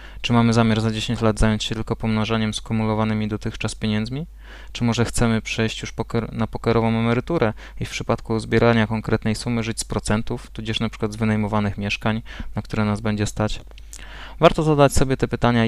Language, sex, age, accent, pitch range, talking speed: Polish, male, 20-39, native, 110-120 Hz, 175 wpm